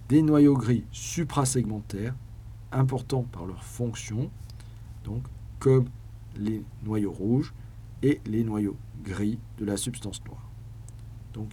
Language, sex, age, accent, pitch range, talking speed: French, male, 40-59, French, 110-120 Hz, 115 wpm